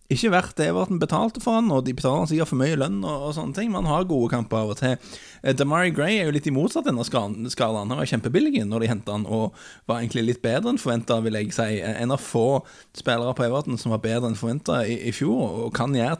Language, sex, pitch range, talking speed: English, male, 110-130 Hz, 260 wpm